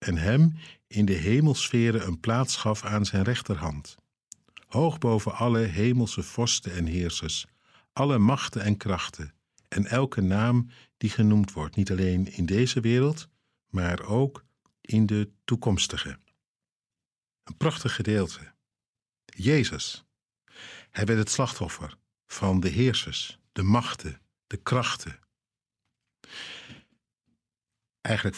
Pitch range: 95-120 Hz